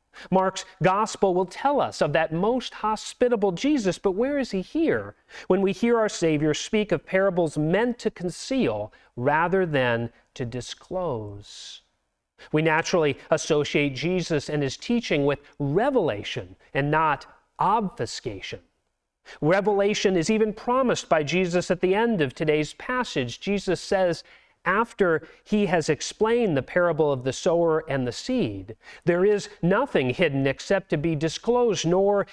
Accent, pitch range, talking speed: American, 150-205 Hz, 145 wpm